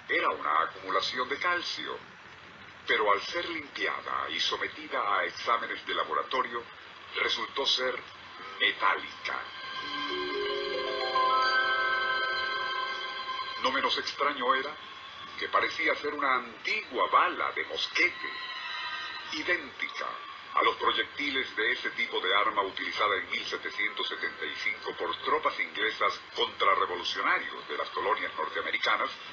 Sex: male